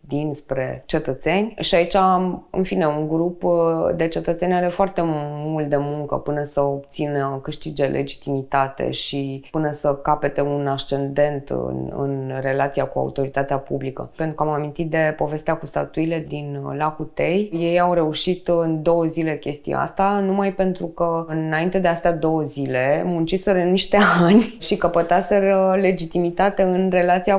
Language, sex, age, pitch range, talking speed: Romanian, female, 20-39, 145-175 Hz, 150 wpm